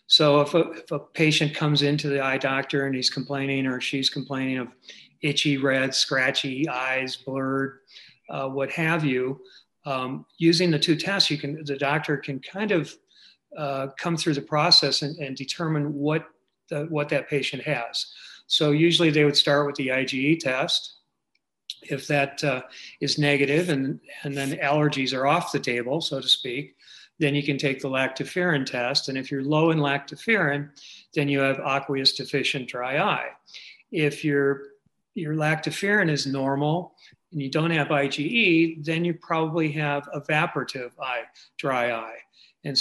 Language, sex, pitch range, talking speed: English, male, 135-155 Hz, 165 wpm